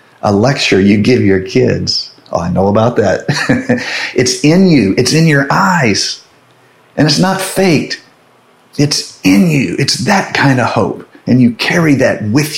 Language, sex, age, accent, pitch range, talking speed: English, male, 40-59, American, 100-135 Hz, 165 wpm